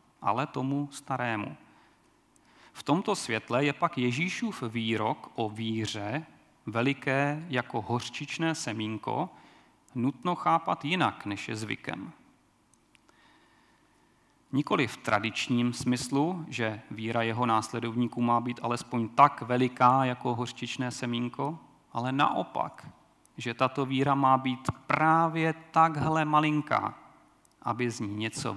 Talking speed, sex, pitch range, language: 110 wpm, male, 115-140 Hz, Czech